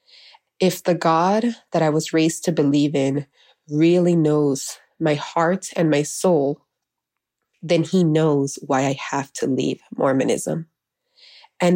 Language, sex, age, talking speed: English, female, 20-39, 140 wpm